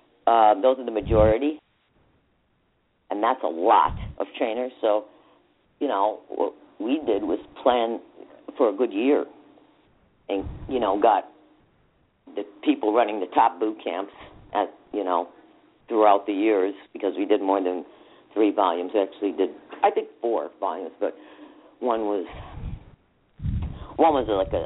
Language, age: English, 50-69